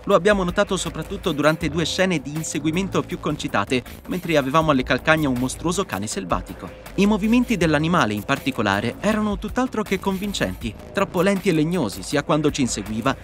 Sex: male